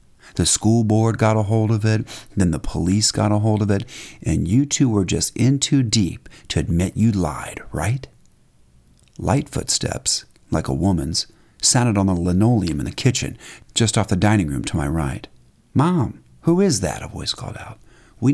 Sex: male